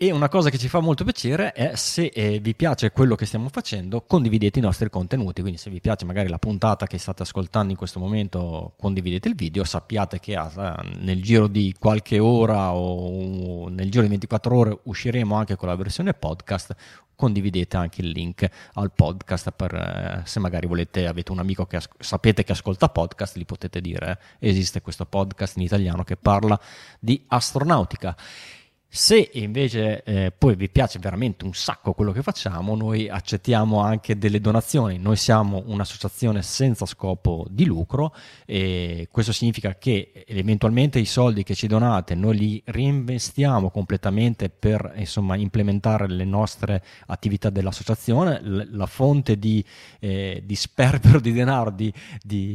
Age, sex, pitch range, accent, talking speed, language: 30-49, male, 95-115 Hz, native, 165 wpm, Italian